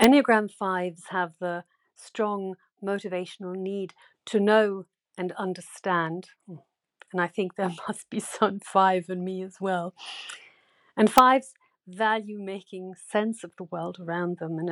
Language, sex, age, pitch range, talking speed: English, female, 50-69, 175-205 Hz, 140 wpm